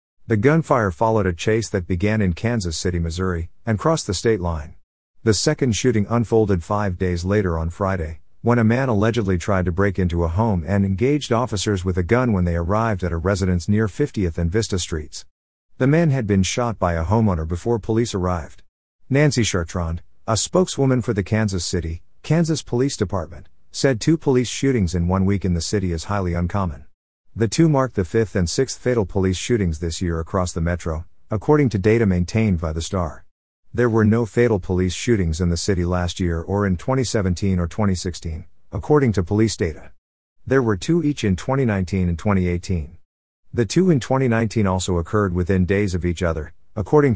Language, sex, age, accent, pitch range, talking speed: English, male, 50-69, American, 90-115 Hz, 190 wpm